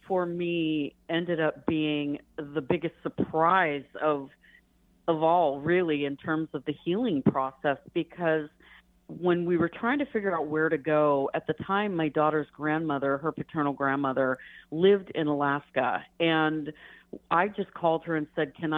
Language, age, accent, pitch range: English, 40-59, American, 145-175 Hz